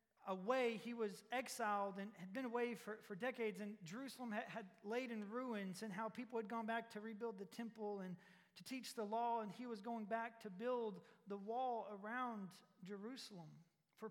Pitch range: 205-235 Hz